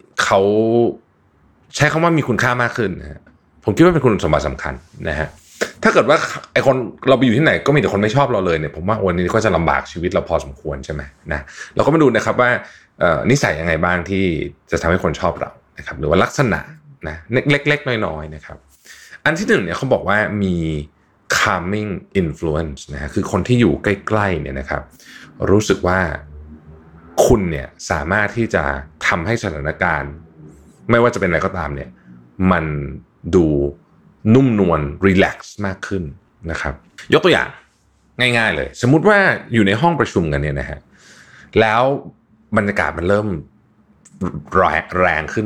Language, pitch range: Thai, 75-110 Hz